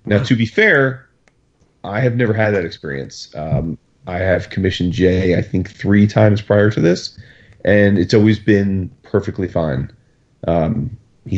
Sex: male